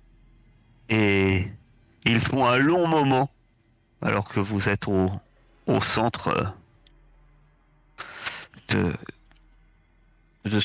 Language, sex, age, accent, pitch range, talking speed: French, male, 40-59, French, 100-120 Hz, 85 wpm